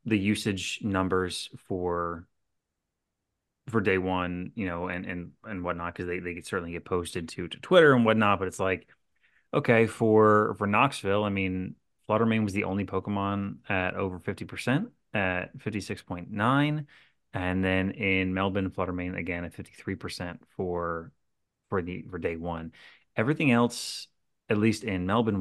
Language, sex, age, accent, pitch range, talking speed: English, male, 30-49, American, 90-120 Hz, 150 wpm